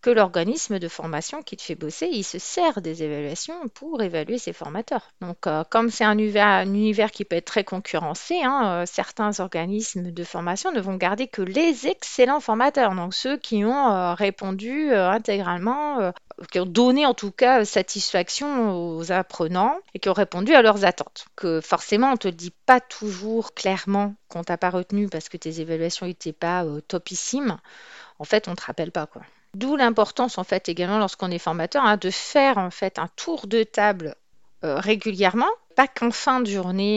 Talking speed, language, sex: 200 wpm, French, female